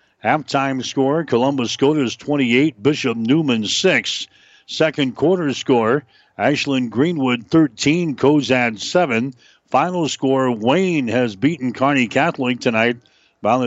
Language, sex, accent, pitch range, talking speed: English, male, American, 125-150 Hz, 110 wpm